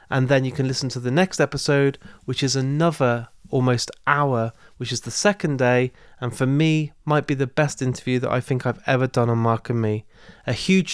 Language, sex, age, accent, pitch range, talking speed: English, male, 30-49, British, 125-150 Hz, 215 wpm